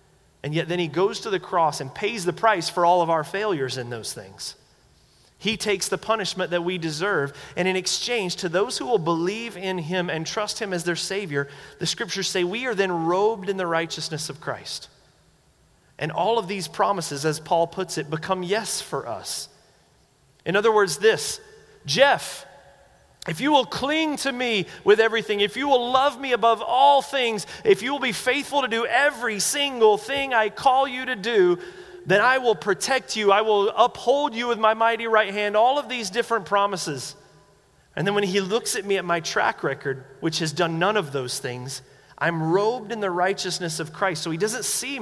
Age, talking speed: 30-49, 205 wpm